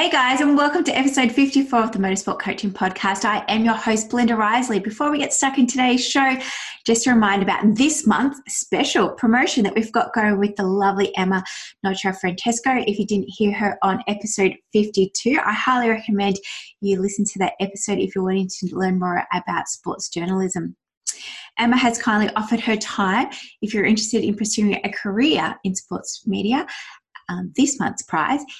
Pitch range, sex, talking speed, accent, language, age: 190-245 Hz, female, 185 wpm, Australian, English, 20-39